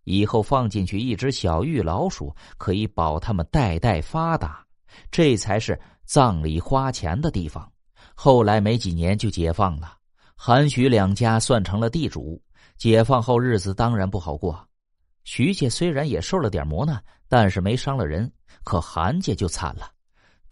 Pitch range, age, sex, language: 95-140 Hz, 30-49, male, Chinese